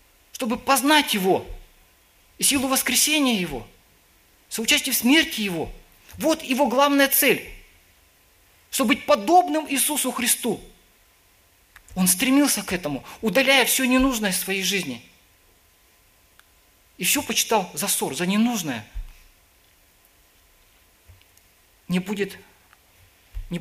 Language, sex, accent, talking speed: Russian, male, native, 100 wpm